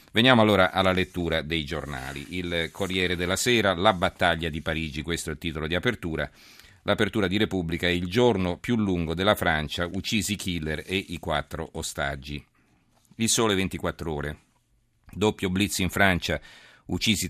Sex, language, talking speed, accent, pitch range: male, Italian, 155 wpm, native, 80-95 Hz